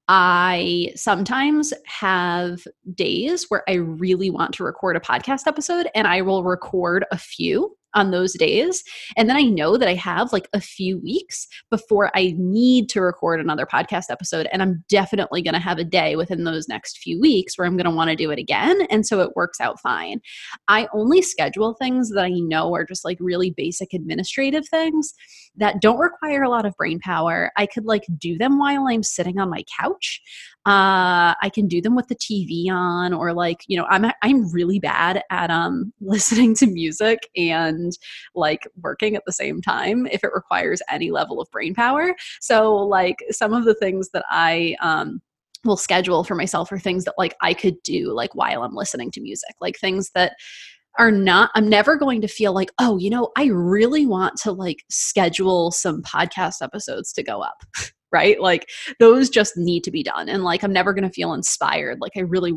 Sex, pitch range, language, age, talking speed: female, 180-230 Hz, English, 20-39, 200 wpm